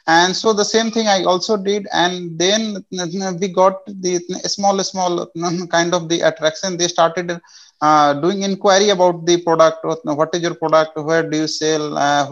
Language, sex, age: English, male, 30-49